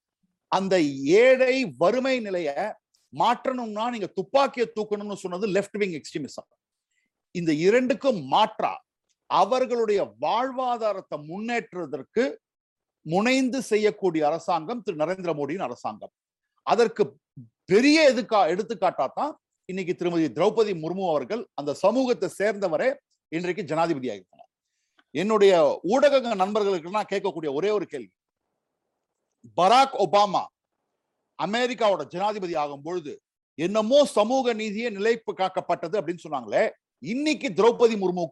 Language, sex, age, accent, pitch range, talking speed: Tamil, male, 50-69, native, 185-255 Hz, 90 wpm